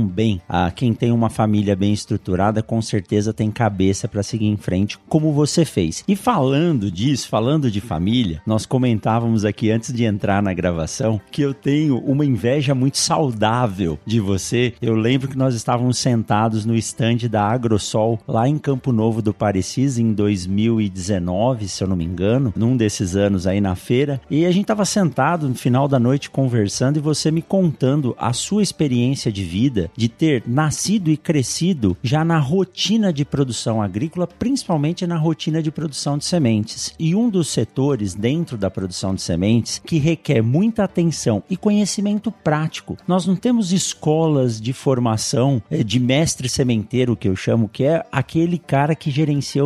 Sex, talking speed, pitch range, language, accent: male, 170 wpm, 110-155 Hz, Portuguese, Brazilian